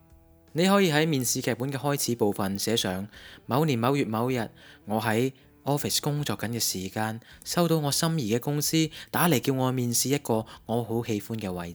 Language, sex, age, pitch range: Chinese, male, 20-39, 95-130 Hz